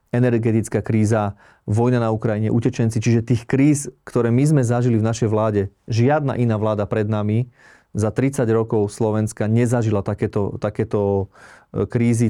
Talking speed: 140 wpm